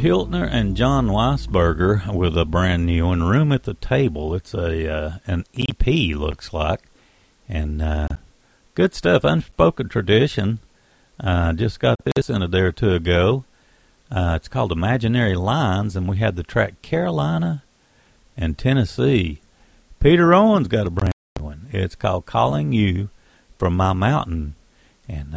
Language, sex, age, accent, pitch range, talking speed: English, male, 50-69, American, 85-120 Hz, 160 wpm